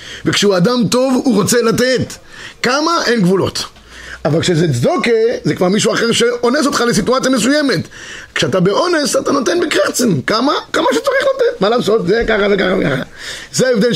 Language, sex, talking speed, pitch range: Hebrew, male, 160 wpm, 180-240 Hz